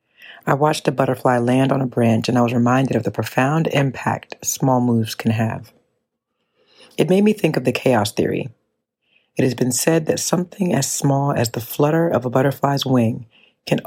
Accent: American